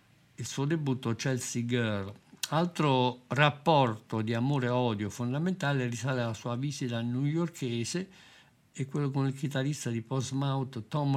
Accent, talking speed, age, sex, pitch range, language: native, 135 wpm, 50-69, male, 120-140 Hz, Italian